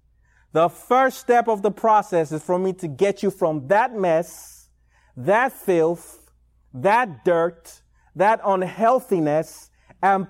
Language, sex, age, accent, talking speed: English, male, 30-49, American, 130 wpm